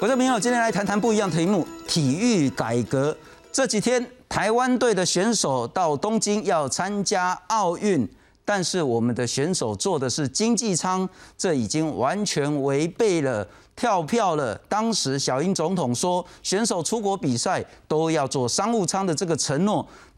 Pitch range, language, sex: 140-210 Hz, Chinese, male